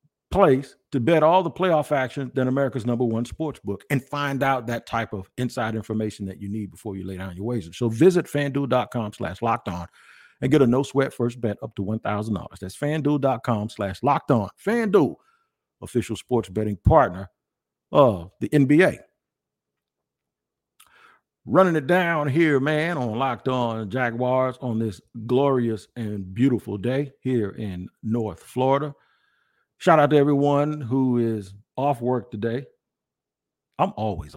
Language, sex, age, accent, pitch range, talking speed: English, male, 50-69, American, 105-145 Hz, 155 wpm